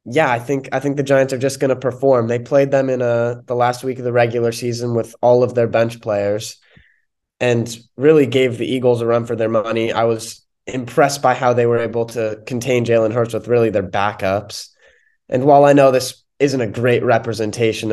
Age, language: 20-39, English